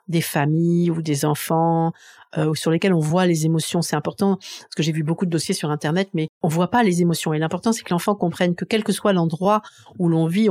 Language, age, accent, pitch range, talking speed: French, 50-69, French, 150-175 Hz, 245 wpm